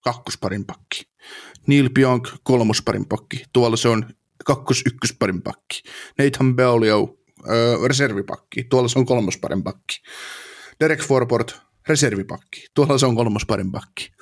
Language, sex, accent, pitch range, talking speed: Finnish, male, native, 110-130 Hz, 120 wpm